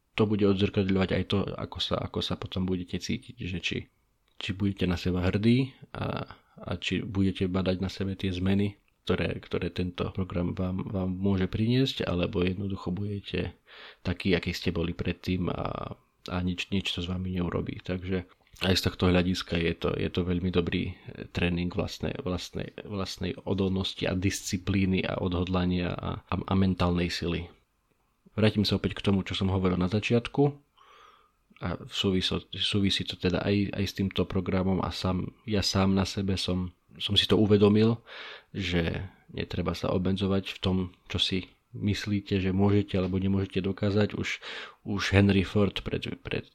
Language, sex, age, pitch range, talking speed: Slovak, male, 40-59, 90-100 Hz, 165 wpm